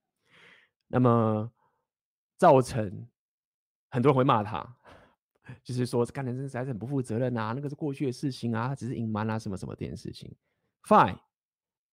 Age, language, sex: 20-39, Chinese, male